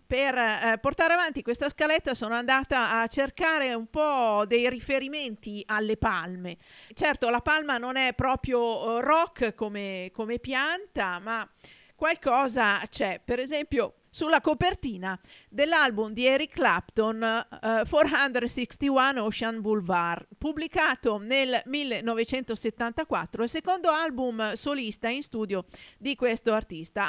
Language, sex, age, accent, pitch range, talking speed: Italian, female, 40-59, native, 210-275 Hz, 120 wpm